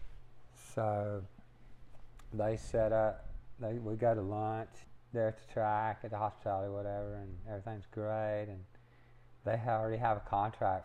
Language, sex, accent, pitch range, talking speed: English, male, American, 100-115 Hz, 140 wpm